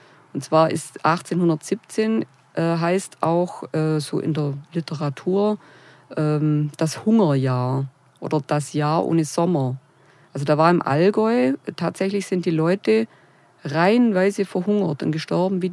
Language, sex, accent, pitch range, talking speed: German, female, German, 145-185 Hz, 135 wpm